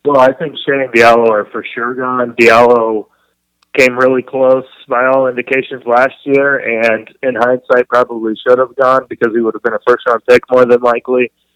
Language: English